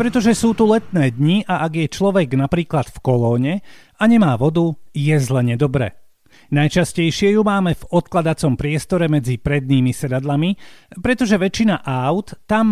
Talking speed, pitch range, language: 145 wpm, 130-195 Hz, Slovak